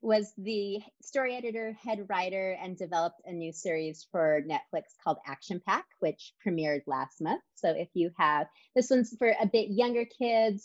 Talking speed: 175 wpm